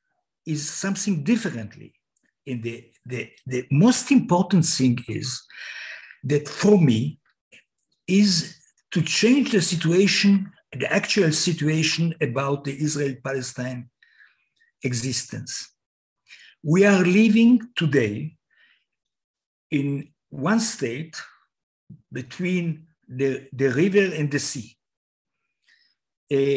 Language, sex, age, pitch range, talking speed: English, male, 60-79, 135-190 Hz, 90 wpm